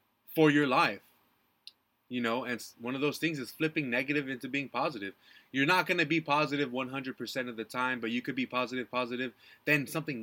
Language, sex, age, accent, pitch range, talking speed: English, male, 20-39, American, 125-165 Hz, 200 wpm